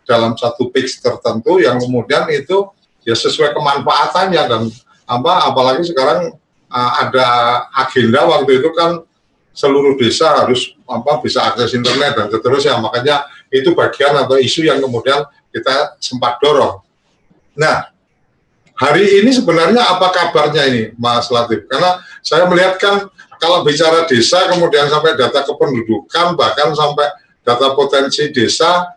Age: 50-69